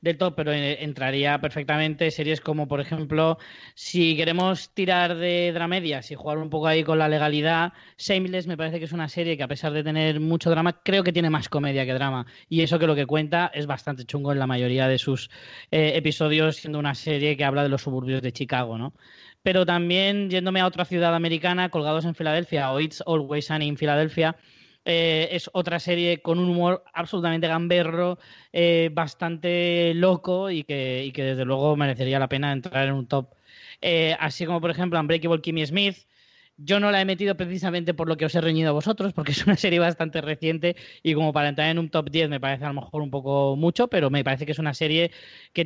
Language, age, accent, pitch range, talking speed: Spanish, 20-39, Spanish, 145-170 Hz, 215 wpm